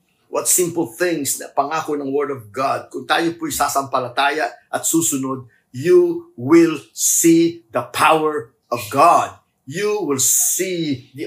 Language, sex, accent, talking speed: English, male, Filipino, 135 wpm